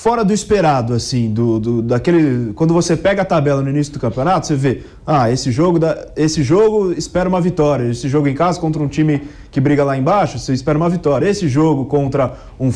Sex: male